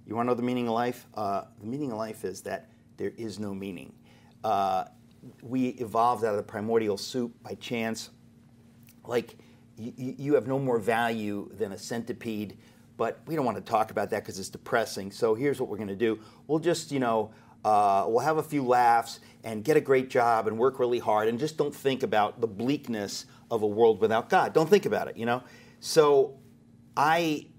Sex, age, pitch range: male, 40-59, 110-135 Hz